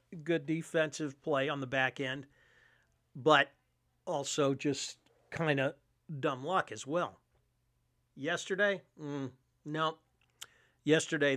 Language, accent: English, American